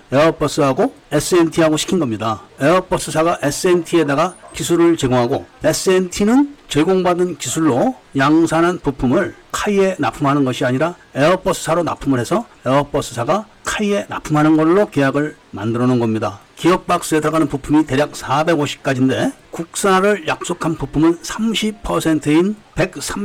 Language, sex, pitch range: Korean, male, 140-185 Hz